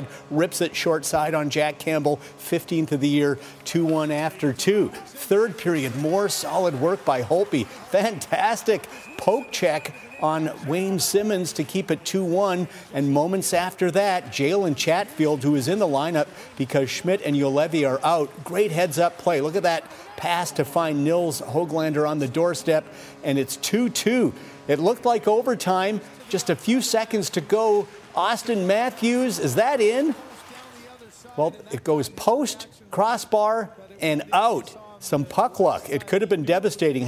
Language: English